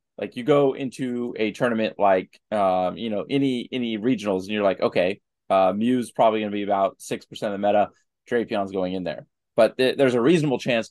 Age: 20-39